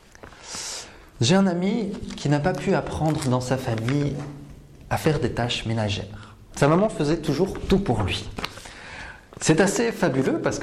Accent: French